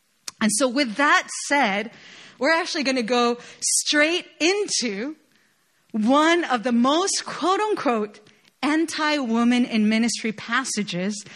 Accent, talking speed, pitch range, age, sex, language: American, 110 wpm, 215-285 Hz, 30-49, female, English